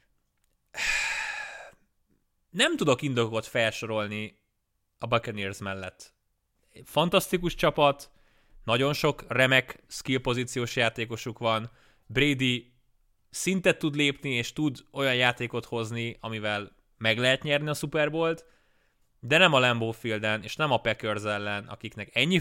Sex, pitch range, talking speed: male, 110-145 Hz, 115 wpm